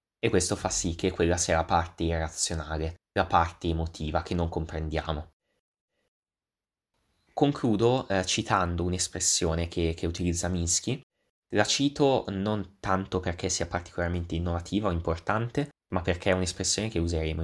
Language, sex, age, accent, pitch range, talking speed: Italian, male, 20-39, native, 85-100 Hz, 140 wpm